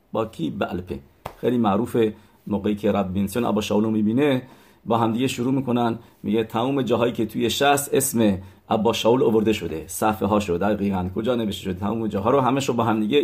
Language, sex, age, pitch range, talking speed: English, male, 50-69, 100-115 Hz, 180 wpm